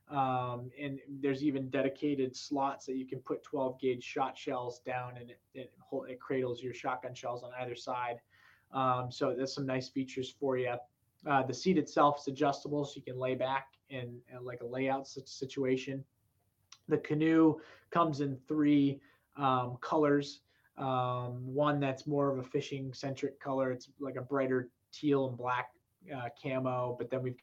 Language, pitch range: English, 125-135 Hz